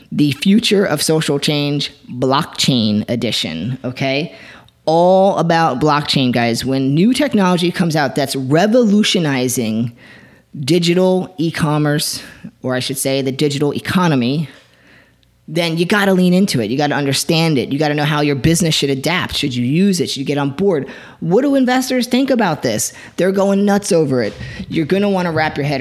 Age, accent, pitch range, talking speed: 30-49, American, 135-180 Hz, 180 wpm